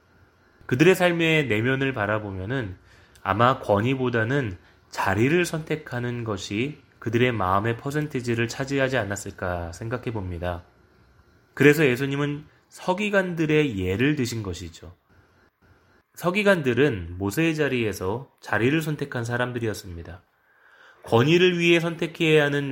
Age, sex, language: 20-39, male, Korean